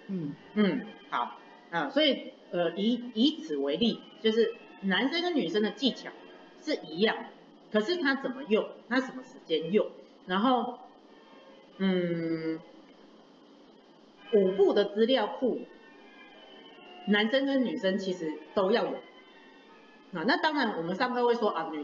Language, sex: Chinese, female